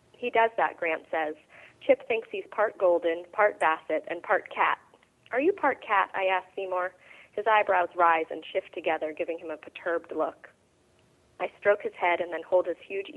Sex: female